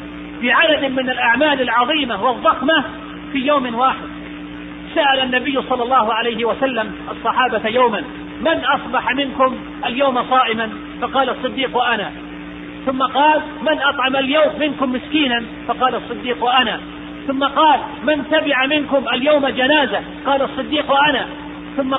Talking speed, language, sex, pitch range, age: 125 wpm, Arabic, male, 235-290 Hz, 40-59